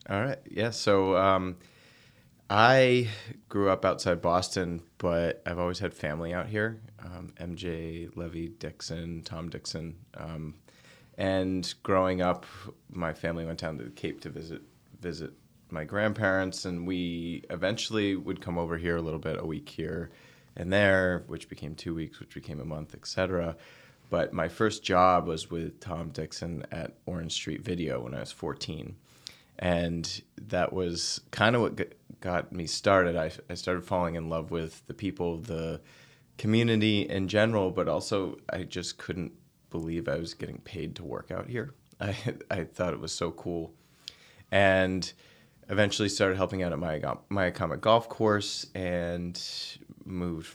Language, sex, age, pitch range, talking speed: English, male, 30-49, 85-95 Hz, 160 wpm